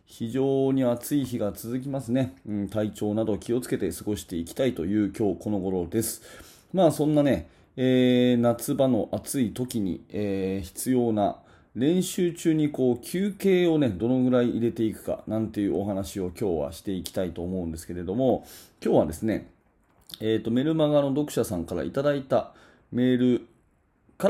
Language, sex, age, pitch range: Japanese, male, 30-49, 95-130 Hz